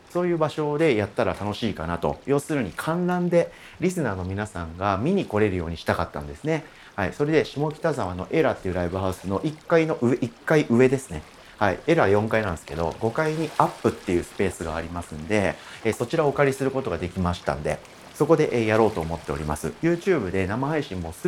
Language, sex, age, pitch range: Japanese, male, 40-59, 90-150 Hz